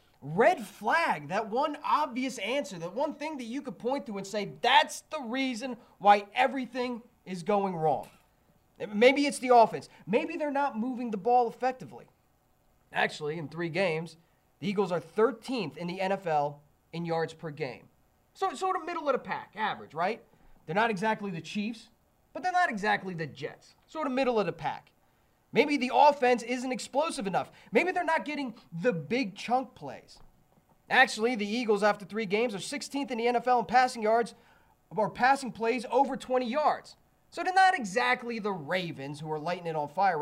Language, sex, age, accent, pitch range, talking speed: English, male, 30-49, American, 205-275 Hz, 180 wpm